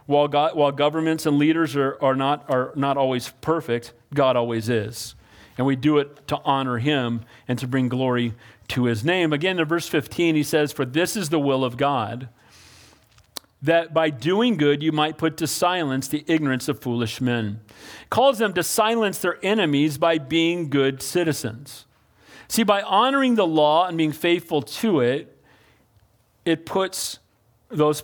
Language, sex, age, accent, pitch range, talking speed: English, male, 40-59, American, 130-175 Hz, 170 wpm